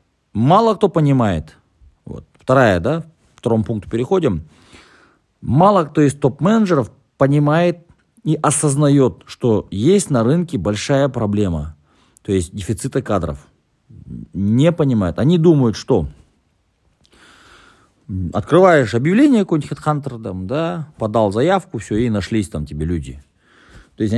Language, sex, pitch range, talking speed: Russian, male, 95-145 Hz, 115 wpm